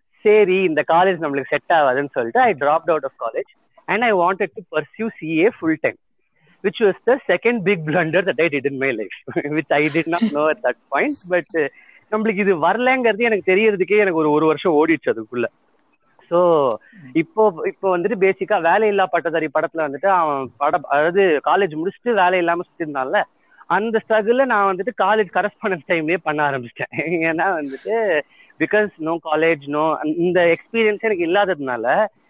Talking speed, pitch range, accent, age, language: 130 wpm, 160-215 Hz, native, 30-49, Tamil